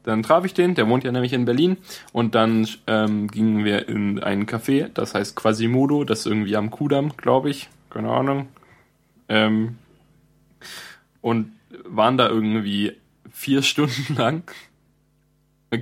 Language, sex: German, male